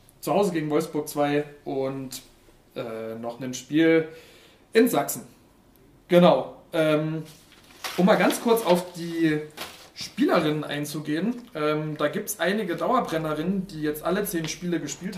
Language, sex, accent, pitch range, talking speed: German, male, German, 145-185 Hz, 135 wpm